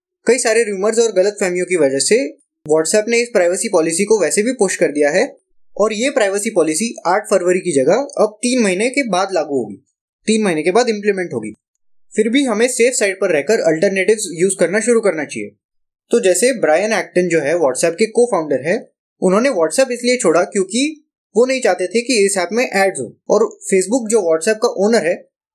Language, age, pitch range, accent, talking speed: Hindi, 20-39, 190-245 Hz, native, 205 wpm